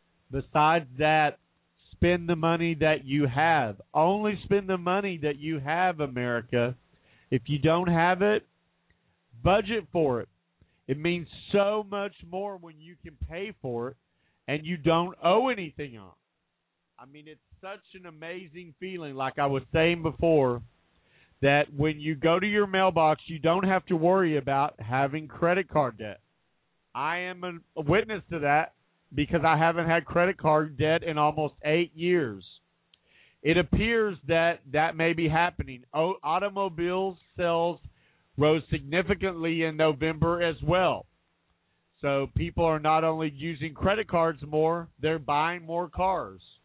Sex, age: male, 40-59